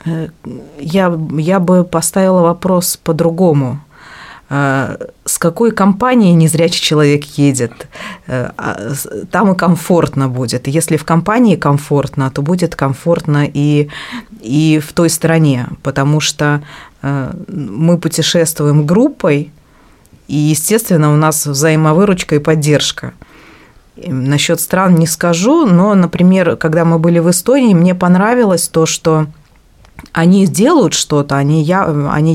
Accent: native